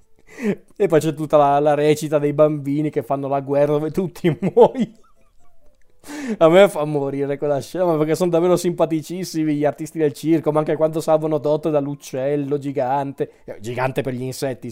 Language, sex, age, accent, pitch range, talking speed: Italian, male, 20-39, native, 140-175 Hz, 165 wpm